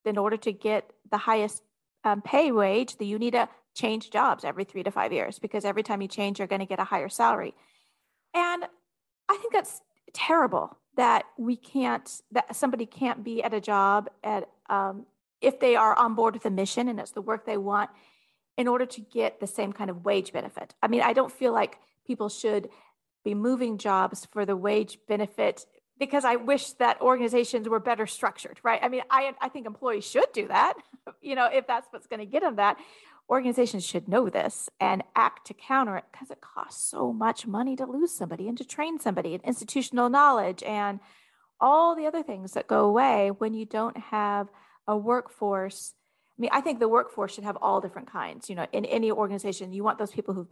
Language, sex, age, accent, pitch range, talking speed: English, female, 40-59, American, 205-255 Hz, 210 wpm